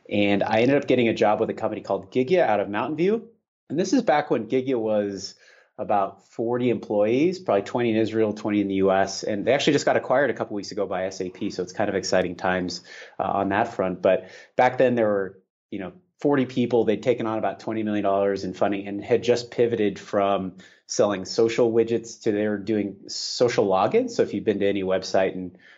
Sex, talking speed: male, 220 wpm